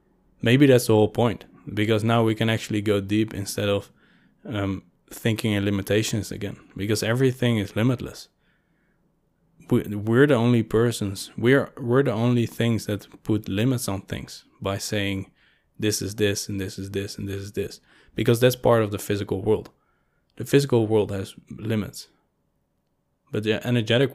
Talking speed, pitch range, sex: 160 wpm, 100-120 Hz, male